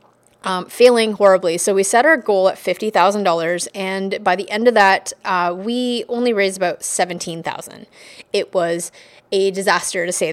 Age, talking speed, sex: 20-39, 165 wpm, female